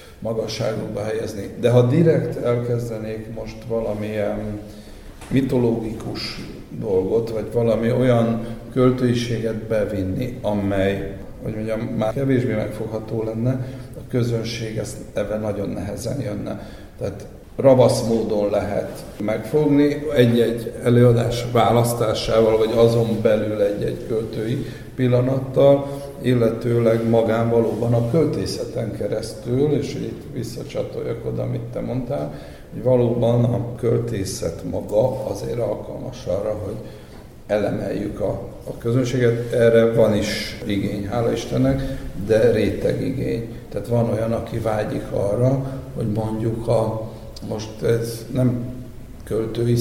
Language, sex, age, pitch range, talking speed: Hungarian, male, 60-79, 110-120 Hz, 105 wpm